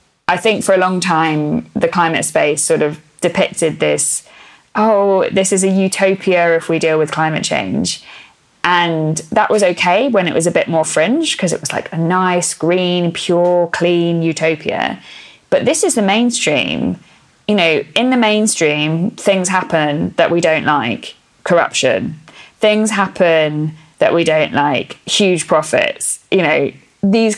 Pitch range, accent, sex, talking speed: 160-195 Hz, British, female, 160 wpm